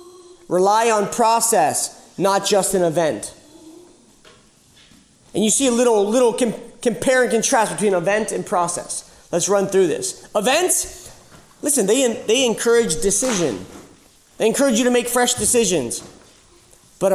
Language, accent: English, American